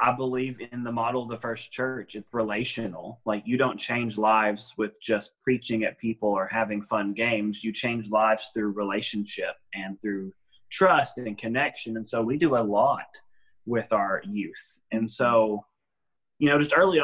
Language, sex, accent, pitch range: English, male, American, 110-135 Hz